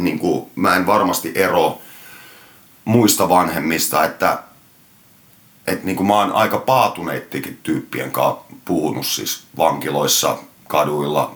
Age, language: 40-59, Finnish